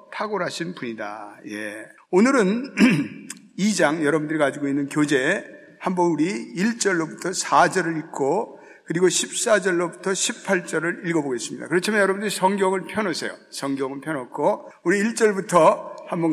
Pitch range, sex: 160-215 Hz, male